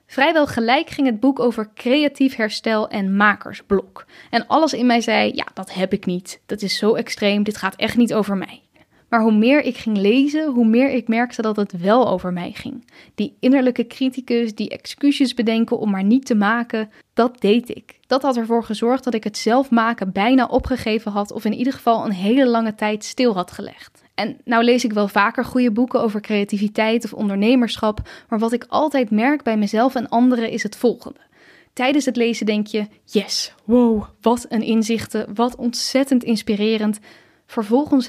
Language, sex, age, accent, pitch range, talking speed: Dutch, female, 10-29, Dutch, 215-255 Hz, 190 wpm